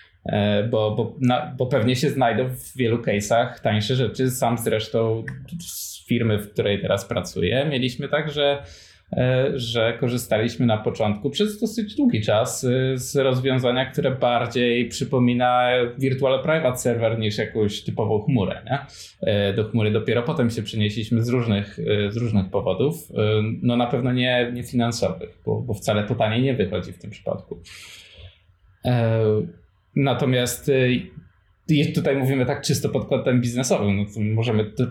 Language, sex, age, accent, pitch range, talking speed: Polish, male, 20-39, native, 105-130 Hz, 150 wpm